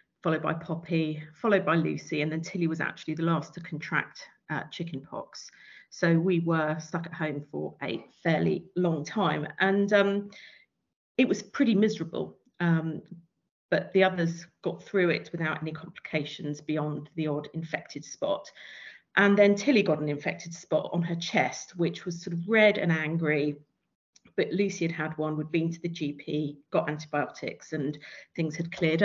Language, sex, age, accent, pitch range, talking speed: English, female, 40-59, British, 155-185 Hz, 170 wpm